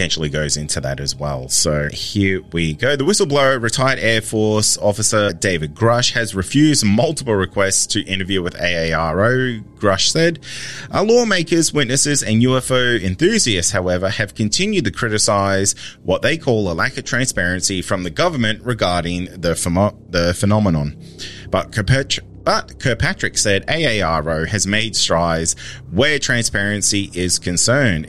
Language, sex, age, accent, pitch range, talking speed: English, male, 30-49, Australian, 85-130 Hz, 145 wpm